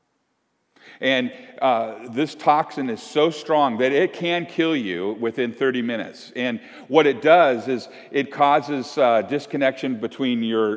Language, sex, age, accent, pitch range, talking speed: English, male, 50-69, American, 105-135 Hz, 145 wpm